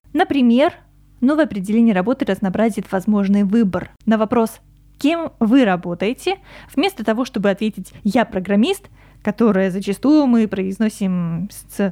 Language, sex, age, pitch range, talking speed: Russian, female, 20-39, 195-245 Hz, 115 wpm